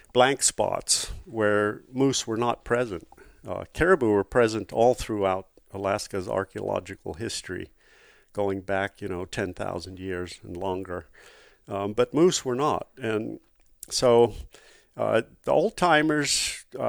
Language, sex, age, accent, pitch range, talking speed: English, male, 50-69, American, 100-125 Hz, 120 wpm